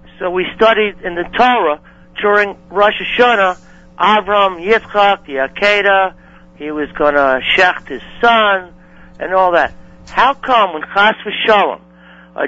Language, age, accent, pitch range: English, 60-79, American, 170-210 Hz